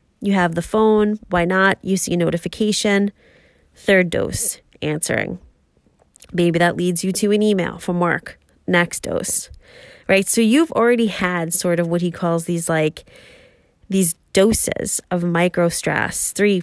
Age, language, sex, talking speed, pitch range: 20-39, English, female, 150 wpm, 170-210 Hz